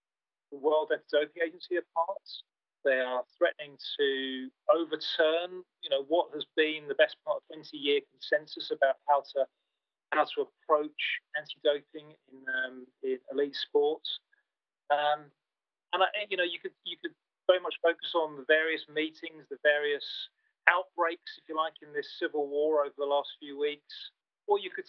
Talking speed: 160 wpm